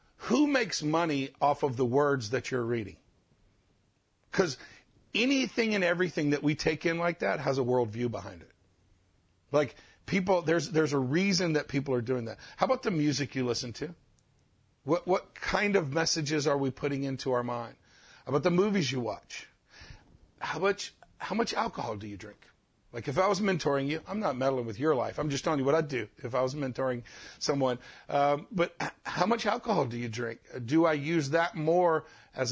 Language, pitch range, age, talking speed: English, 130-170 Hz, 50-69, 195 wpm